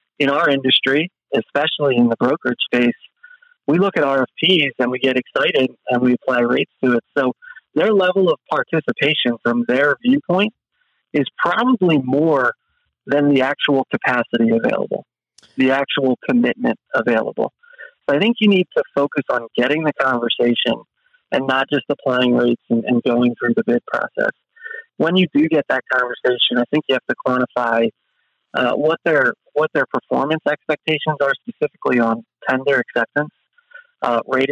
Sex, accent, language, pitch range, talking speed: male, American, English, 125-185 Hz, 160 wpm